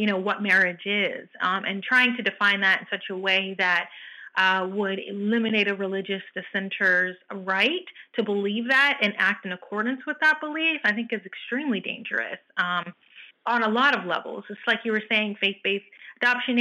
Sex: female